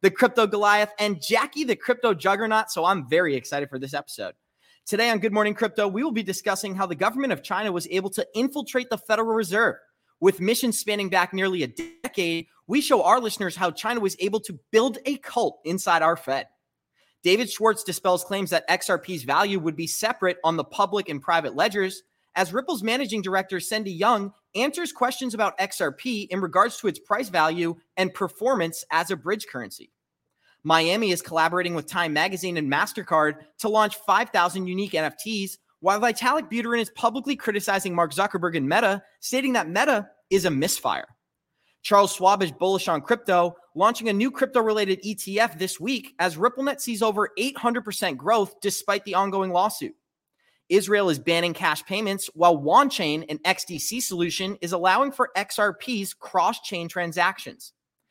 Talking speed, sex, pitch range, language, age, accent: 170 wpm, male, 180-225 Hz, English, 30-49, American